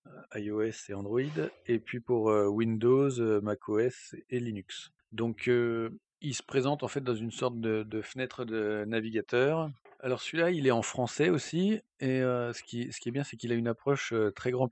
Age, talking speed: 40-59, 205 wpm